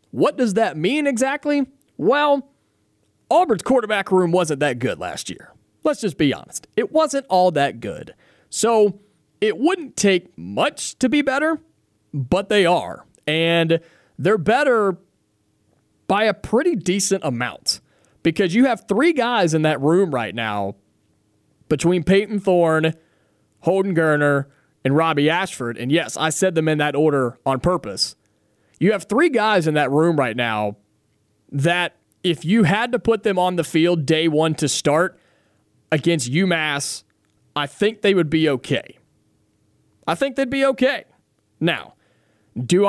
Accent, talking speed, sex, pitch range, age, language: American, 150 wpm, male, 140-205 Hz, 30-49, English